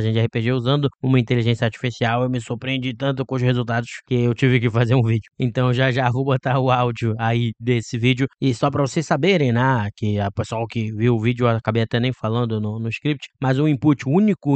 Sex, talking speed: male, 230 wpm